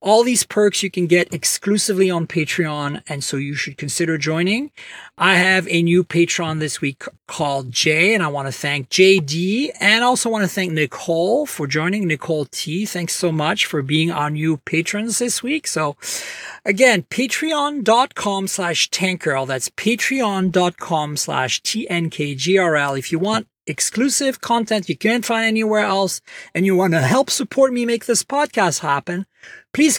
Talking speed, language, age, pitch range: 160 wpm, English, 40-59, 155-220 Hz